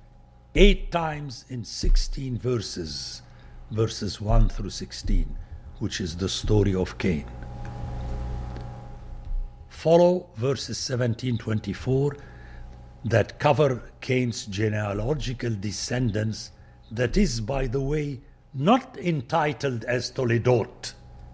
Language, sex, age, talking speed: English, male, 60-79, 90 wpm